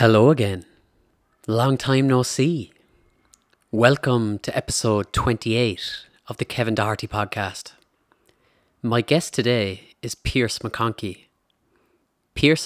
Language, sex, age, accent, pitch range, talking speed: English, male, 30-49, Irish, 105-125 Hz, 105 wpm